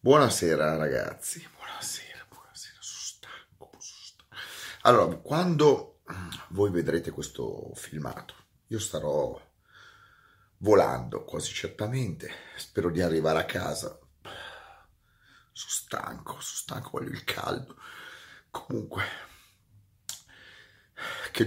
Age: 40-59